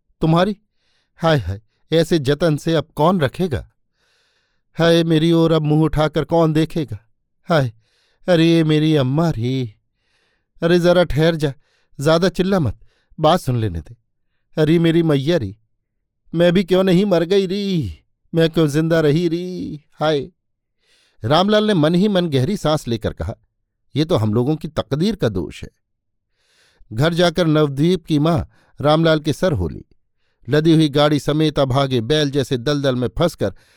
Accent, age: native, 50-69